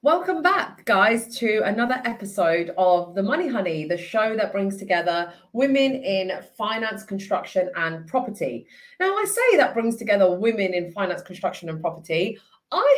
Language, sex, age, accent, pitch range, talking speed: English, female, 30-49, British, 170-240 Hz, 155 wpm